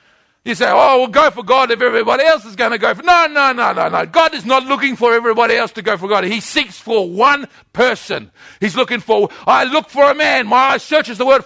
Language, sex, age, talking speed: English, male, 50-69, 255 wpm